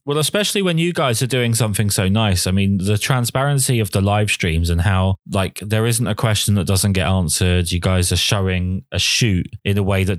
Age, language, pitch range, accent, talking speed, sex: 20-39, English, 95-120 Hz, British, 230 wpm, male